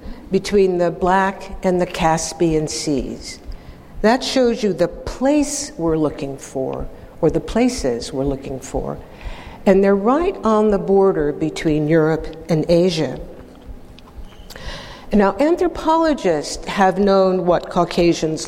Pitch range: 155-195 Hz